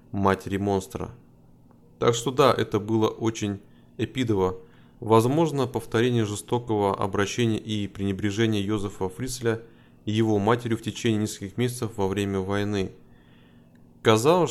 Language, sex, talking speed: Russian, male, 115 wpm